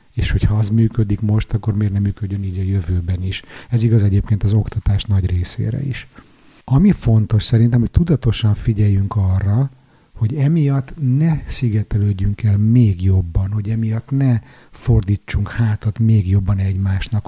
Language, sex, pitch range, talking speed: Hungarian, male, 100-120 Hz, 150 wpm